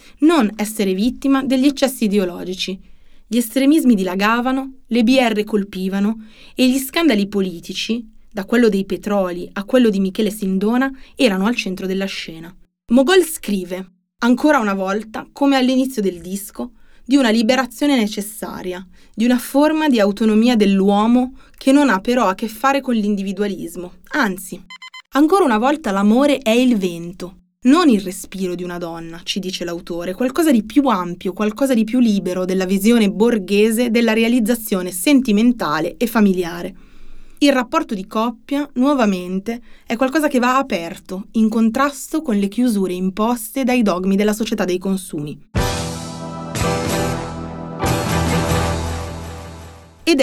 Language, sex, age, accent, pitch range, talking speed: Italian, female, 20-39, native, 185-255 Hz, 135 wpm